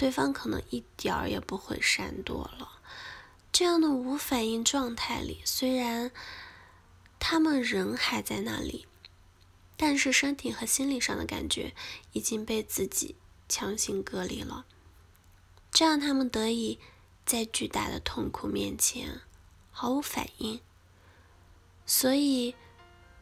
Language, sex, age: Chinese, female, 10-29